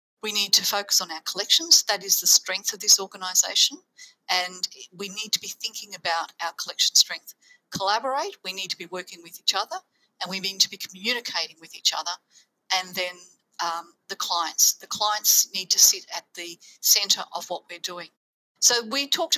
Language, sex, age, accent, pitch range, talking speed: English, female, 50-69, Australian, 180-220 Hz, 190 wpm